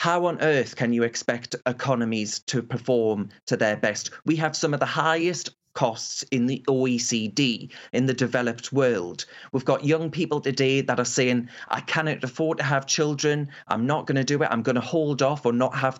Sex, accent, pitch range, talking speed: male, British, 125-165 Hz, 205 wpm